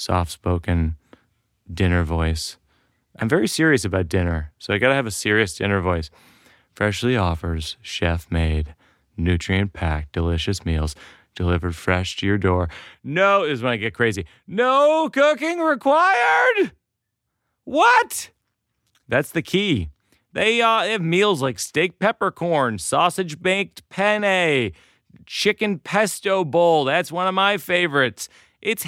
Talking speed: 125 wpm